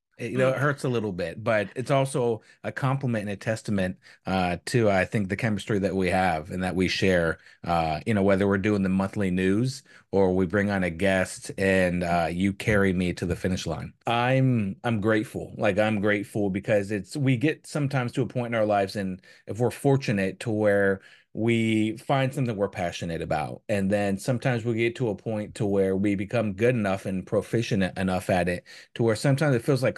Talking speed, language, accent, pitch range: 210 wpm, English, American, 95-115 Hz